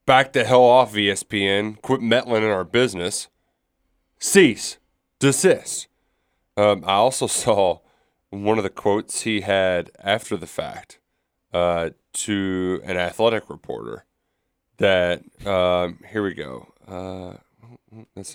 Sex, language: male, English